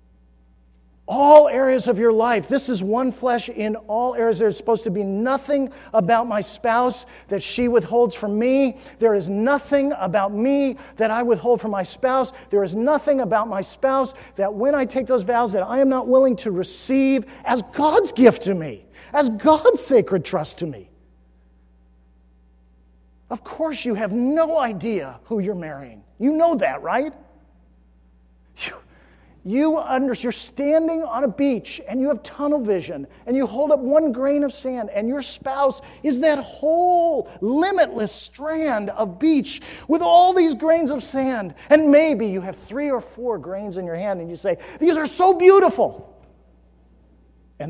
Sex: male